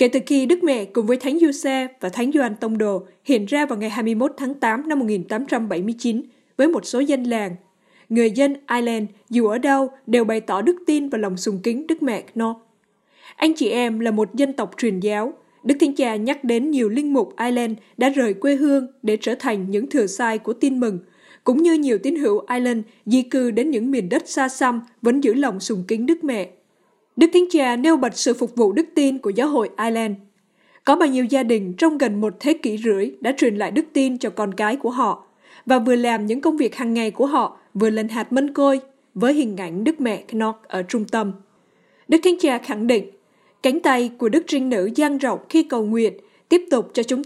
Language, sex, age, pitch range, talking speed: Vietnamese, female, 20-39, 220-275 Hz, 225 wpm